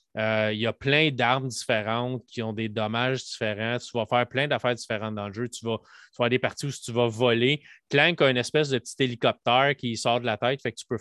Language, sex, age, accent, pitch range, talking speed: French, male, 30-49, Canadian, 115-130 Hz, 260 wpm